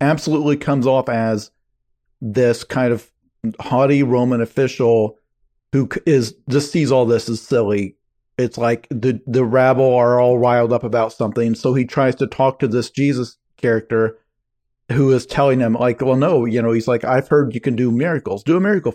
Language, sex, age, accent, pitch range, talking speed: English, male, 40-59, American, 115-135 Hz, 185 wpm